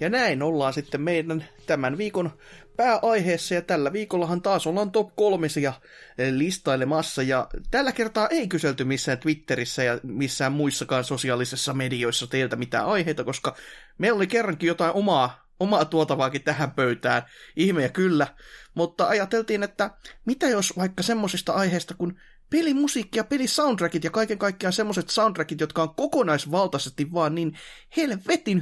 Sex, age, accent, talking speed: male, 30-49, native, 140 wpm